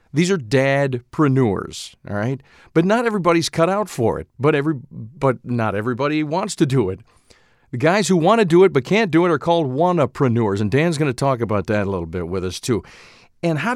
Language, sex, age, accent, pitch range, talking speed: English, male, 50-69, American, 120-180 Hz, 220 wpm